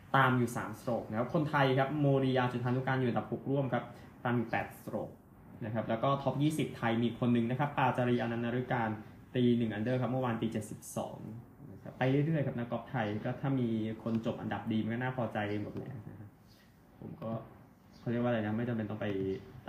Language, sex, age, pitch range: Thai, male, 20-39, 115-135 Hz